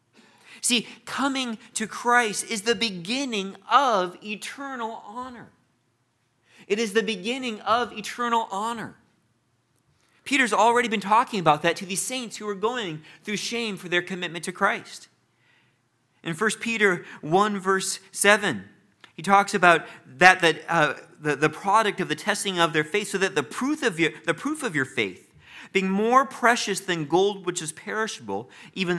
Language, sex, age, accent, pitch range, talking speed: English, male, 40-59, American, 155-220 Hz, 160 wpm